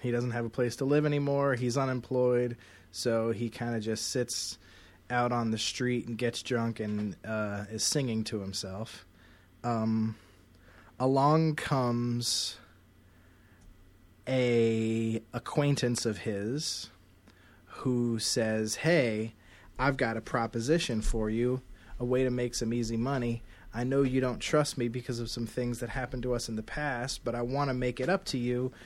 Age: 30-49